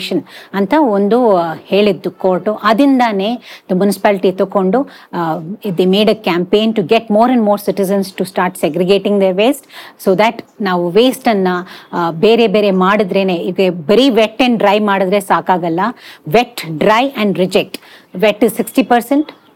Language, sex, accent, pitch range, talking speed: Kannada, female, native, 185-225 Hz, 125 wpm